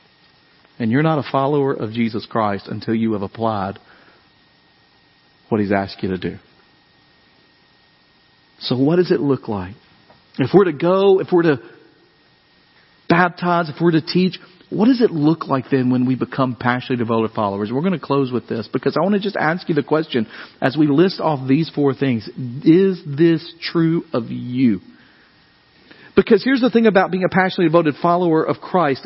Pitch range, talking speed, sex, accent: 135-195 Hz, 180 wpm, male, American